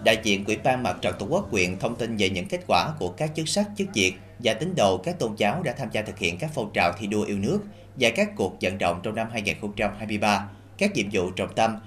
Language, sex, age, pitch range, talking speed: Vietnamese, male, 20-39, 100-115 Hz, 265 wpm